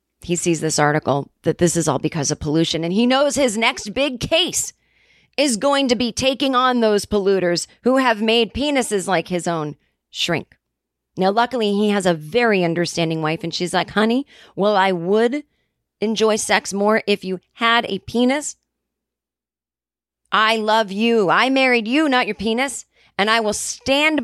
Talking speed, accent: 175 wpm, American